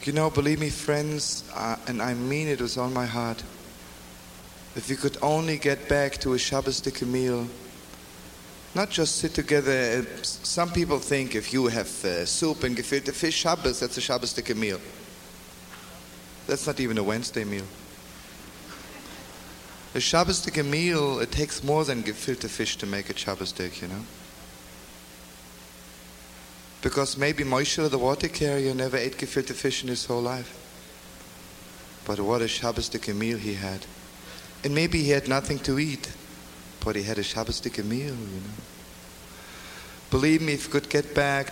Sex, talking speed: male, 160 wpm